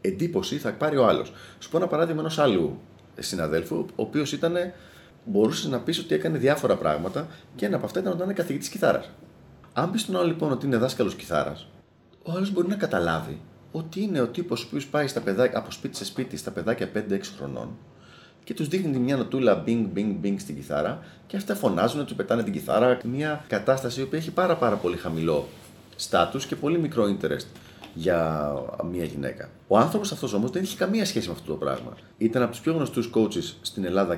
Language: Greek